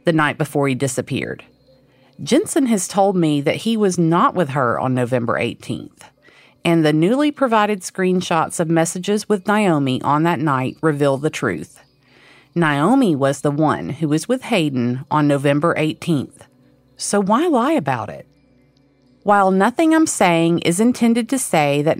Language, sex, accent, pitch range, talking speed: English, female, American, 145-225 Hz, 160 wpm